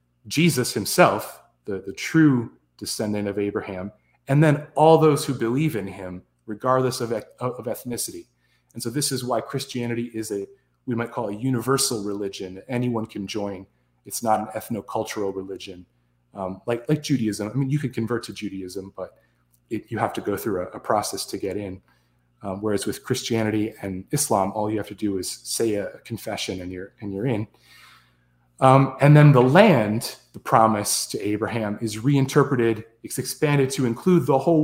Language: English